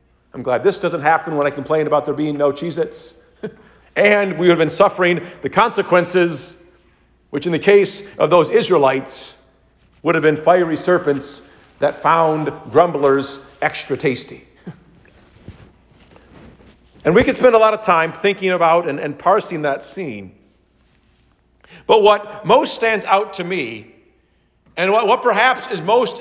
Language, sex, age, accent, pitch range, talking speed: English, male, 50-69, American, 155-230 Hz, 150 wpm